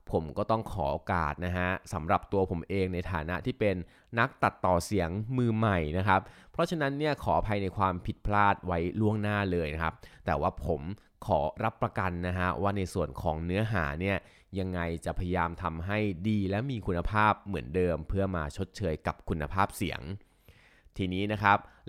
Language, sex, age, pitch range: Thai, male, 20-39, 85-105 Hz